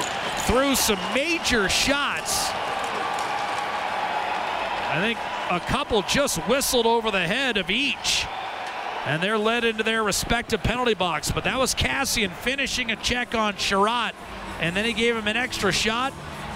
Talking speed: 145 wpm